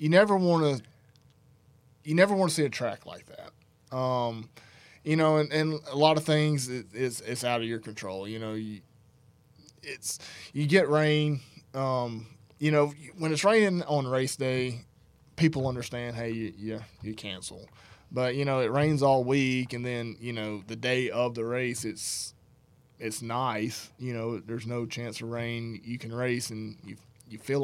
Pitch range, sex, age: 115-145 Hz, male, 20-39